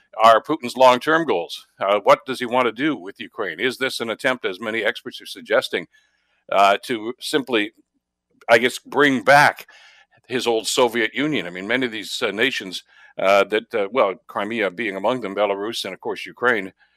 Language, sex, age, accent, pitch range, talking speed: English, male, 60-79, American, 110-150 Hz, 185 wpm